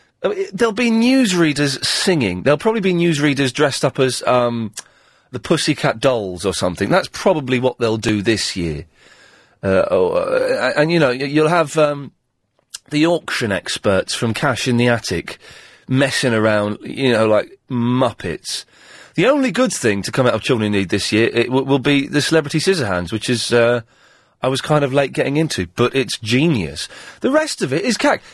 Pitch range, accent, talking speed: 115-175 Hz, British, 190 wpm